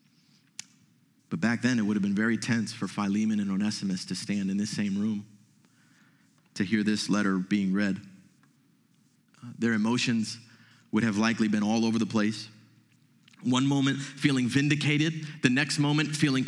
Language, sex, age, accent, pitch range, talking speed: English, male, 30-49, American, 115-160 Hz, 155 wpm